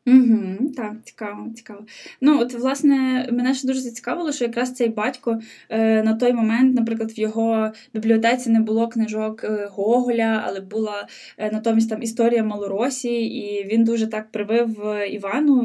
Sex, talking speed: female, 145 wpm